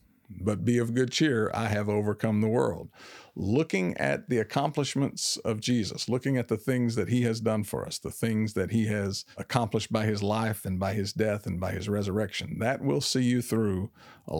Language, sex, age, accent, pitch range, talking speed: English, male, 50-69, American, 100-125 Hz, 205 wpm